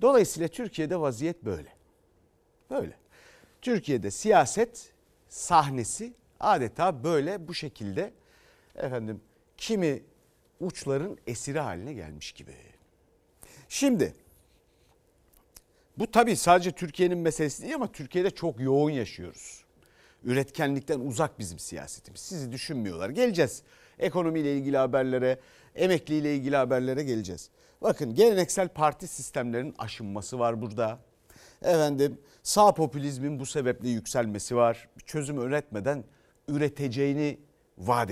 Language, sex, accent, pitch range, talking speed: Turkish, male, native, 120-175 Hz, 100 wpm